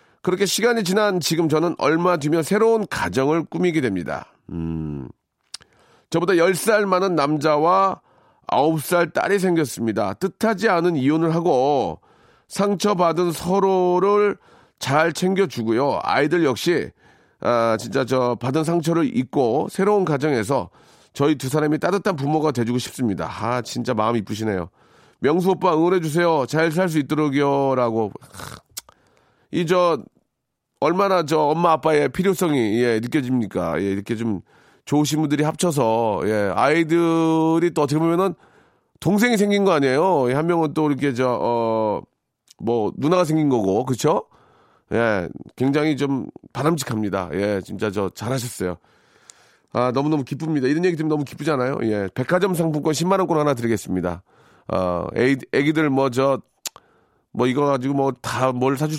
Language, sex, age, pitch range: Korean, male, 40-59, 125-175 Hz